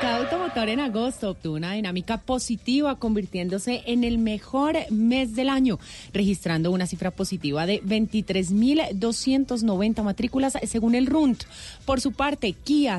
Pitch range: 200-260 Hz